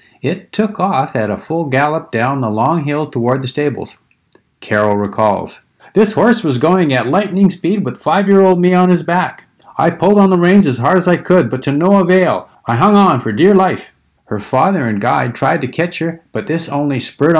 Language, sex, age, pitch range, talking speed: English, male, 50-69, 120-175 Hz, 210 wpm